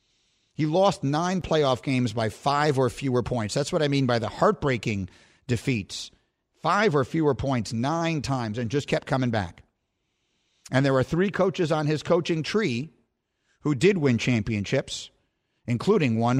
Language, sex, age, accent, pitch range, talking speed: English, male, 50-69, American, 115-150 Hz, 160 wpm